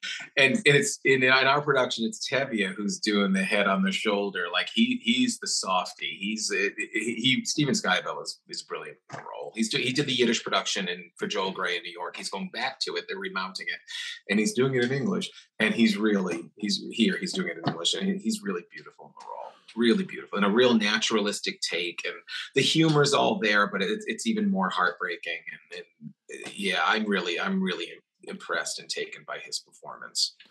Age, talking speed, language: 30-49, 215 wpm, English